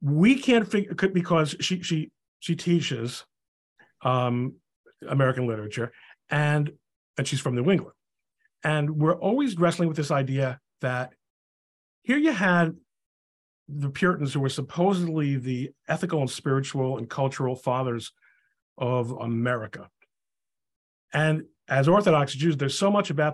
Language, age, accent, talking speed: English, 50-69, American, 130 wpm